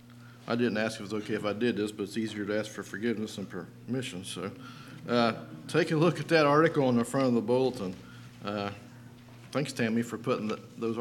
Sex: male